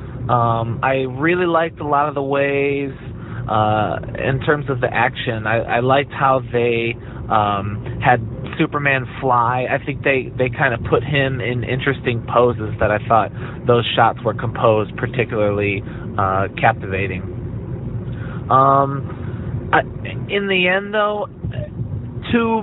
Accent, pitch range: American, 120-140 Hz